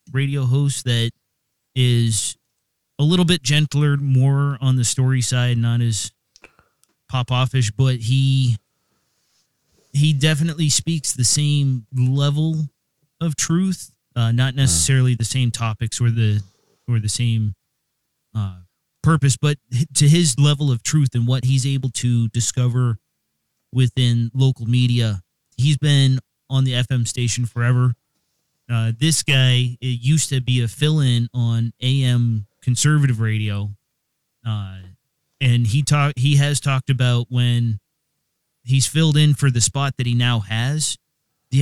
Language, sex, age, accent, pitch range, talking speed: English, male, 30-49, American, 115-140 Hz, 140 wpm